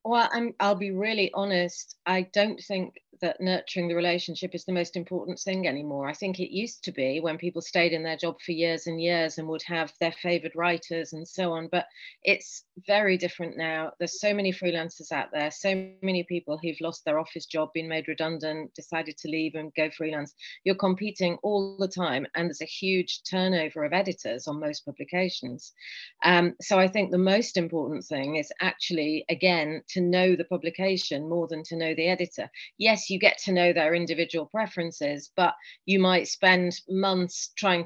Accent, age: British, 40-59